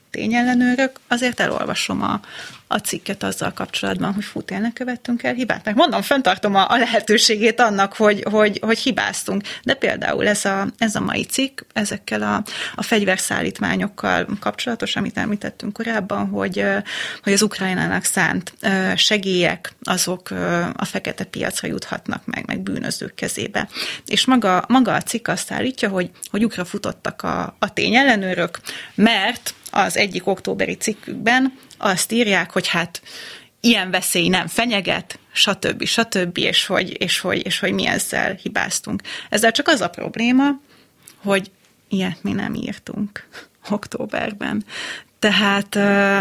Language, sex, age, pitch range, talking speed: Hungarian, female, 30-49, 195-235 Hz, 135 wpm